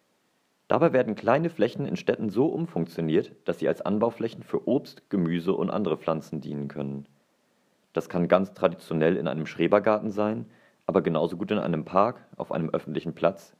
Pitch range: 75-105 Hz